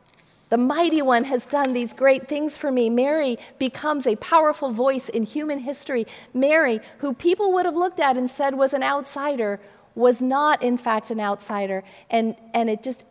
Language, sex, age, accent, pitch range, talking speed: English, female, 40-59, American, 220-265 Hz, 185 wpm